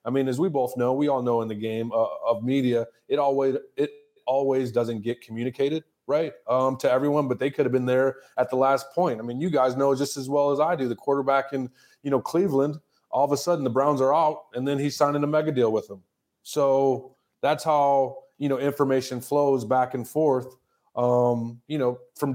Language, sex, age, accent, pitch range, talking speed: English, male, 20-39, American, 120-140 Hz, 225 wpm